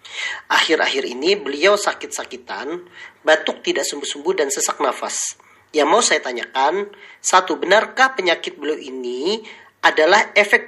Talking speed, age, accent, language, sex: 120 wpm, 40-59, native, Indonesian, male